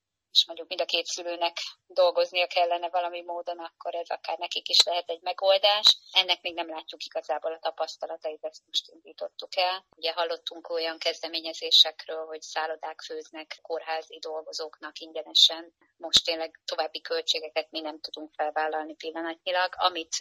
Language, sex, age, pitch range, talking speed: Hungarian, female, 20-39, 155-170 Hz, 145 wpm